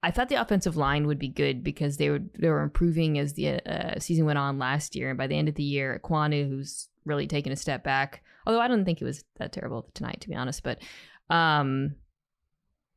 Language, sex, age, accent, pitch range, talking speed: English, female, 20-39, American, 145-190 Hz, 230 wpm